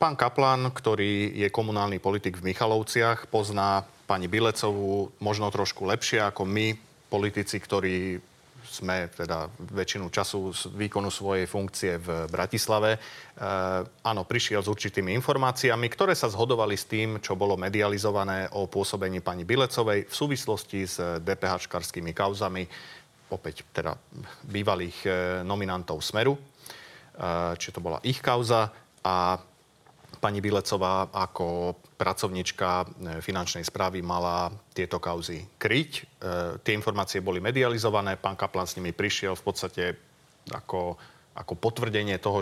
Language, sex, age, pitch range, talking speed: Slovak, male, 30-49, 90-110 Hz, 125 wpm